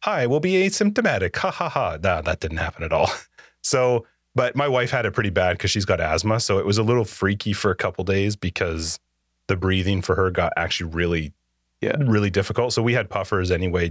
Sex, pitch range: male, 85-115 Hz